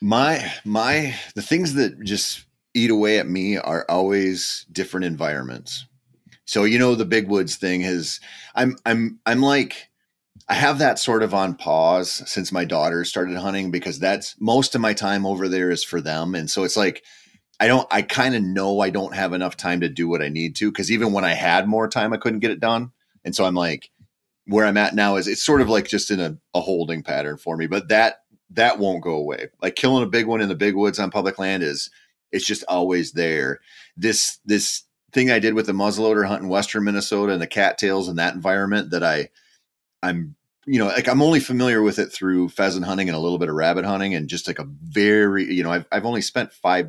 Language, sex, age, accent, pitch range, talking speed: English, male, 30-49, American, 90-115 Hz, 225 wpm